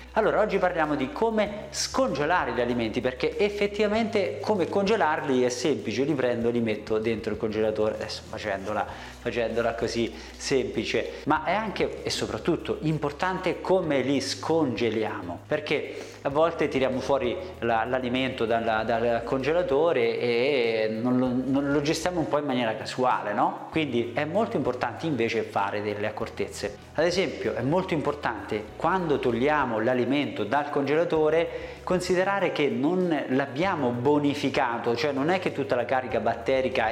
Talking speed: 145 wpm